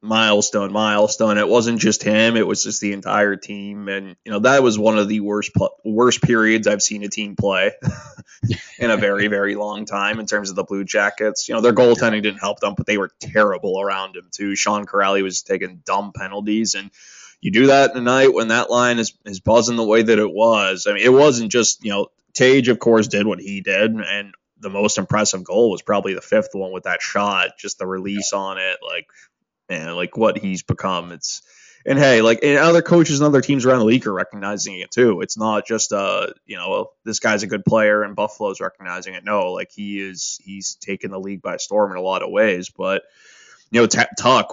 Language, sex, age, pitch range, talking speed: English, male, 20-39, 100-115 Hz, 225 wpm